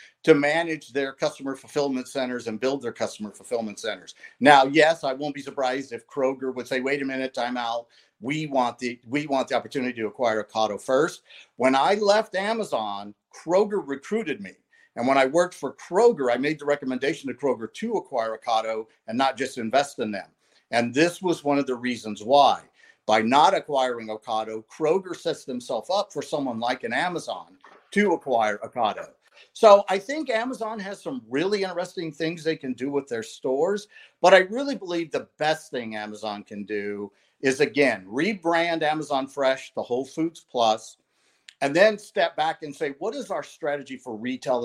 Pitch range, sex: 125-175 Hz, male